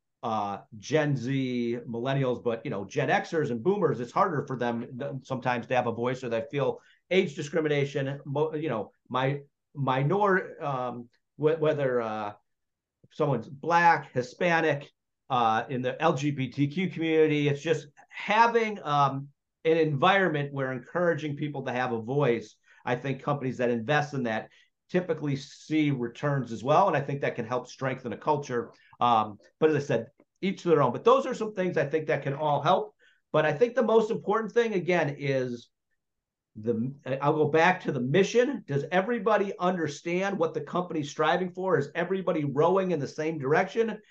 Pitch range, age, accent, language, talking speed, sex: 130-175 Hz, 40-59, American, English, 170 wpm, male